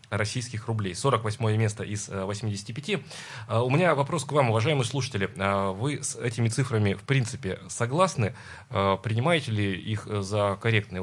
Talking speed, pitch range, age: 135 wpm, 105-135 Hz, 30-49